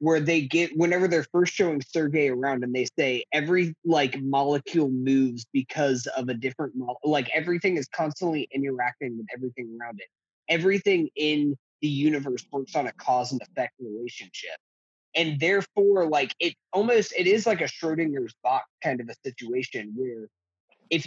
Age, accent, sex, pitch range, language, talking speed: 20-39, American, male, 130-165 Hz, English, 160 wpm